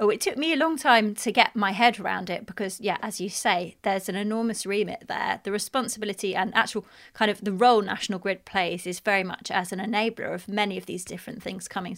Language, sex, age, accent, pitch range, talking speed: English, female, 30-49, British, 195-240 Hz, 235 wpm